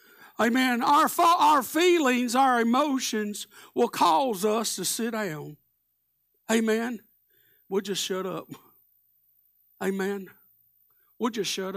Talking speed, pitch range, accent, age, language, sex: 110 wpm, 185-305 Hz, American, 60-79, English, male